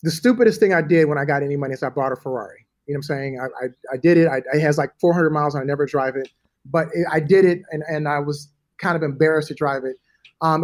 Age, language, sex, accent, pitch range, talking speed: 30-49, English, male, American, 150-180 Hz, 295 wpm